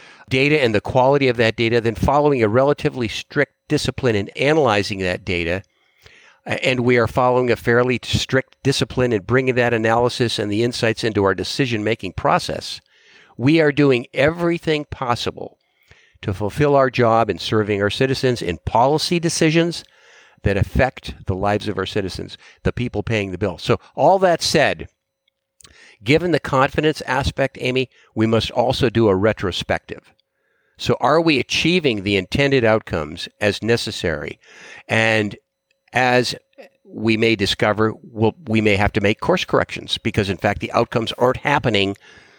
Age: 50-69